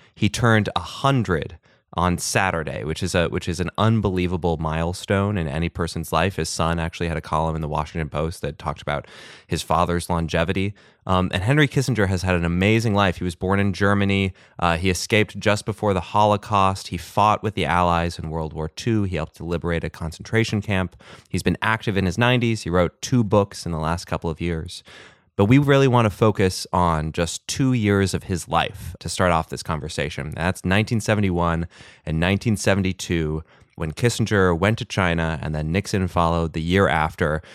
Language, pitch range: English, 85-110 Hz